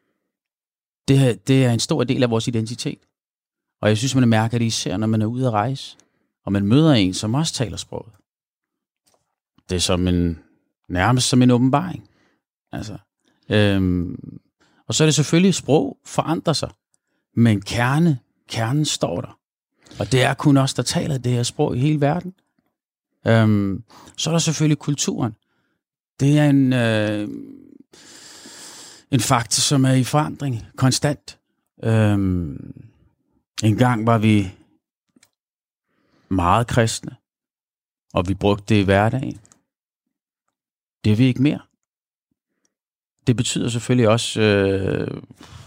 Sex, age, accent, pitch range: male, 30-49, native, 105-145 Hz